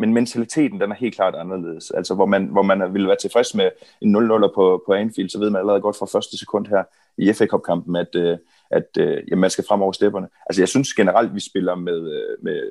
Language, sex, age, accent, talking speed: Danish, male, 30-49, native, 235 wpm